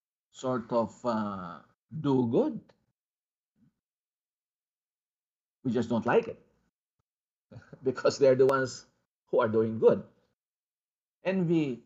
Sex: male